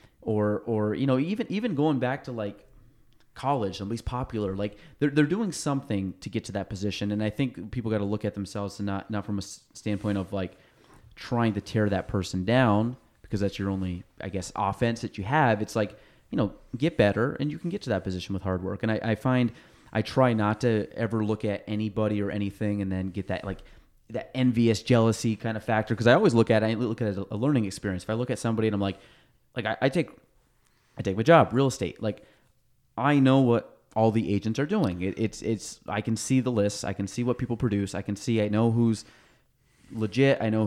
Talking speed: 240 wpm